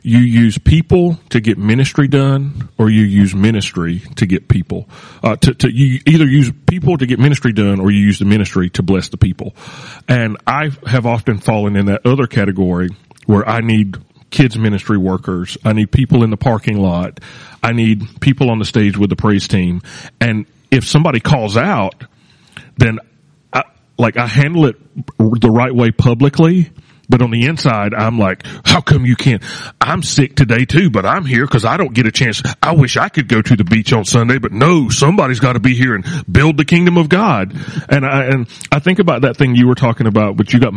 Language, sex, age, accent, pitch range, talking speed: English, male, 40-59, American, 110-155 Hz, 210 wpm